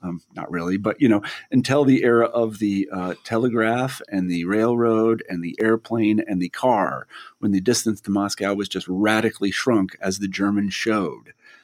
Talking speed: 180 wpm